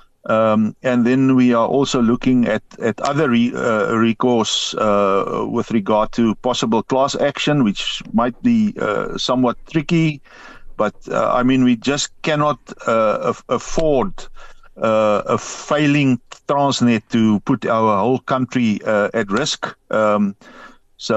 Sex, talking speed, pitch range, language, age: male, 140 wpm, 115-145 Hz, English, 50-69